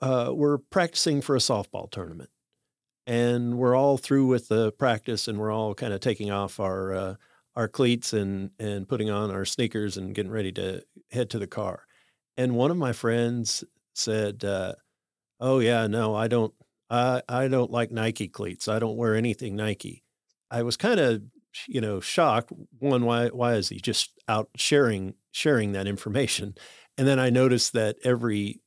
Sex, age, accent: male, 50-69, American